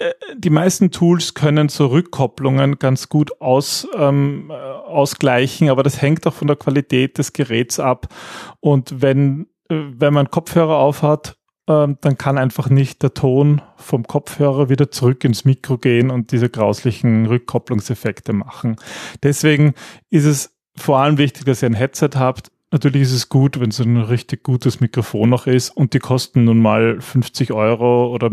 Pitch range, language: 125-150 Hz, German